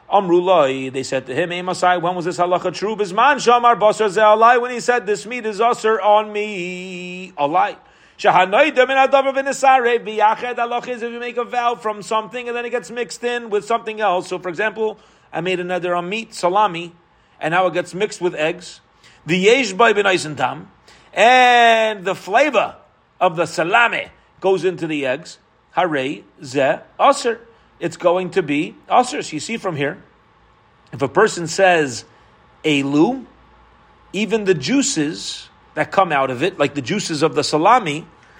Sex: male